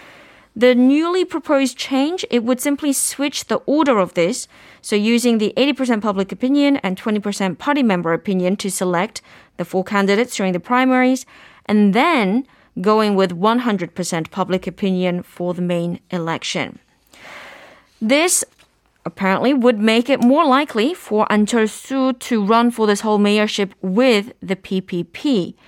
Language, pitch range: Korean, 190-255 Hz